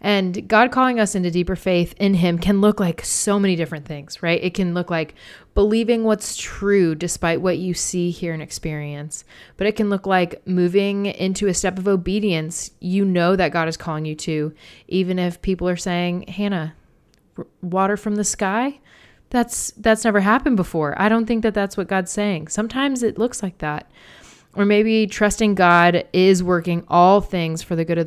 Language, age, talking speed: English, 20-39, 190 wpm